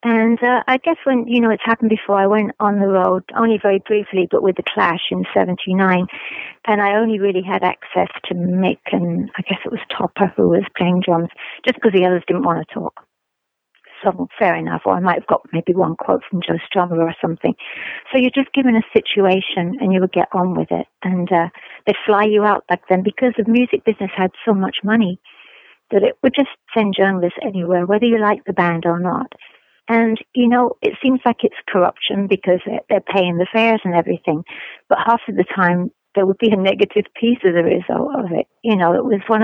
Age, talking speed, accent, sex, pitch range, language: 50-69, 220 wpm, British, female, 180-225 Hz, English